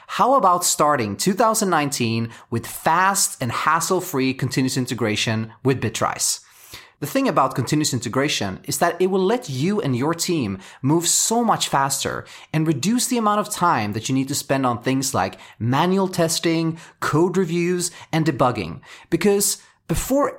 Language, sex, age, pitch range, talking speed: English, male, 30-49, 130-205 Hz, 155 wpm